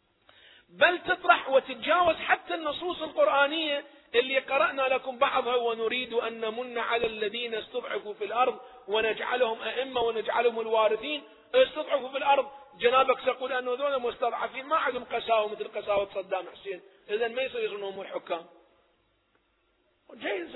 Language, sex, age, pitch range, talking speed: Arabic, male, 40-59, 230-315 Hz, 125 wpm